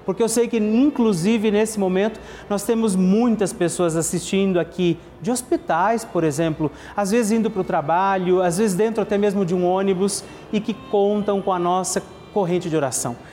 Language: Portuguese